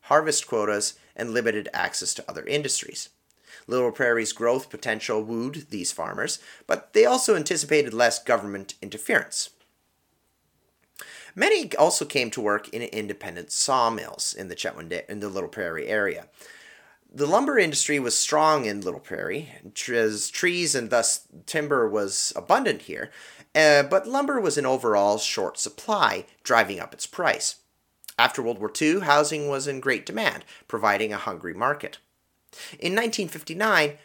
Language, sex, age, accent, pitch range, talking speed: English, male, 30-49, American, 115-180 Hz, 145 wpm